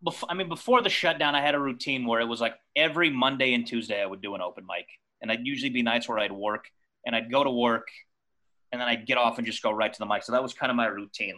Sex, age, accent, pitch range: male, 30-49, American, 105-125 Hz